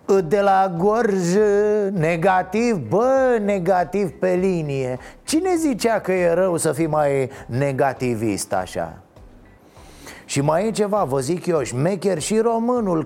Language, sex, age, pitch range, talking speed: Romanian, male, 30-49, 160-210 Hz, 130 wpm